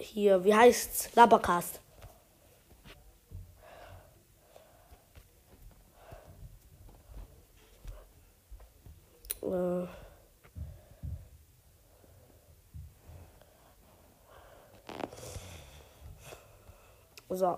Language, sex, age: German, female, 20-39